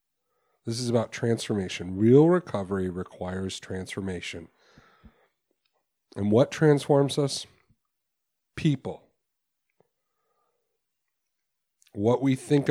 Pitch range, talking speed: 105-140 Hz, 75 wpm